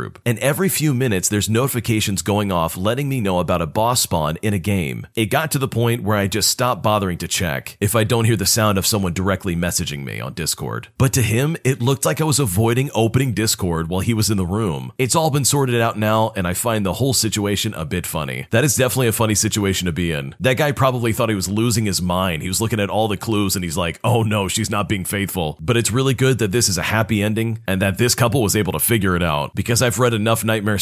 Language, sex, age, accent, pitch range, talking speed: English, male, 40-59, American, 95-130 Hz, 260 wpm